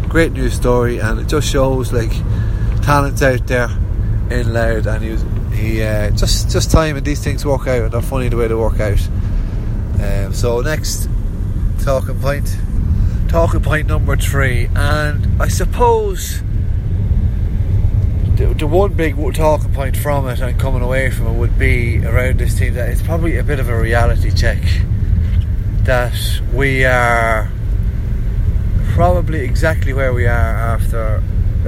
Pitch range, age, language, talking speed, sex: 95-115 Hz, 30-49, English, 150 wpm, male